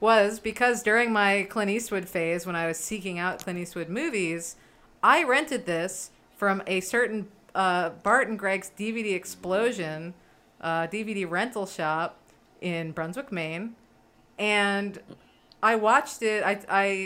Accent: American